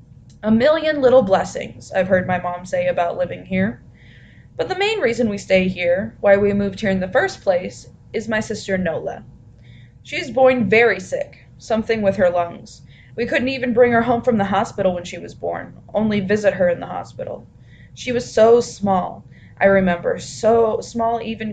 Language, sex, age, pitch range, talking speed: English, female, 20-39, 180-230 Hz, 185 wpm